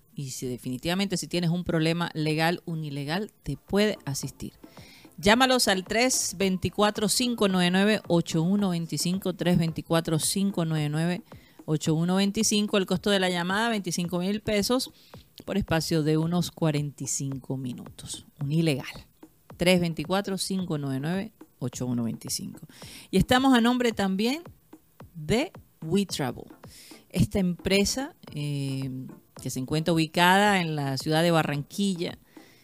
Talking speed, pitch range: 95 wpm, 155-200 Hz